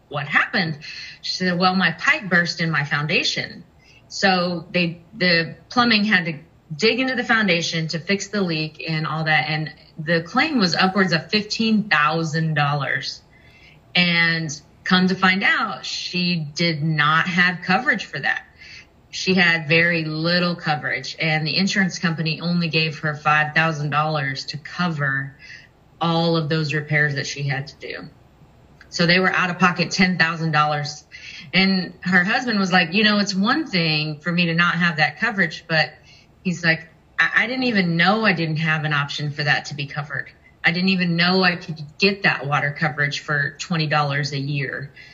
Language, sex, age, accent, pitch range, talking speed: English, female, 30-49, American, 155-185 Hz, 170 wpm